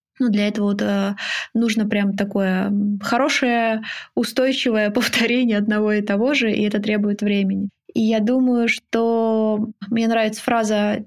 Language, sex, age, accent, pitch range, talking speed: Russian, female, 20-39, native, 210-245 Hz, 135 wpm